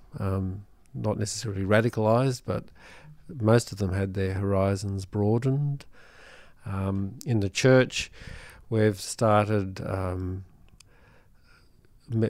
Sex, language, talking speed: male, English, 100 wpm